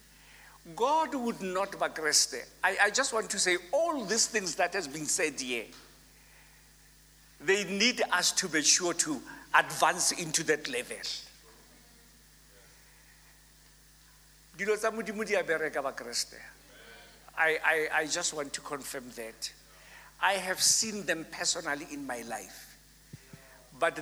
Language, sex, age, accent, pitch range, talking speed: English, male, 60-79, South African, 155-215 Hz, 115 wpm